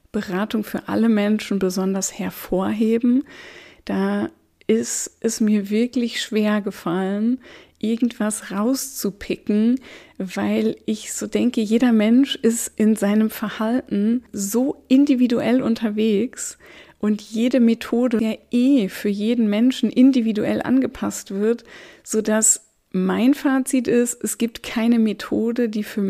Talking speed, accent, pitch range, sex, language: 115 wpm, German, 205-245 Hz, female, German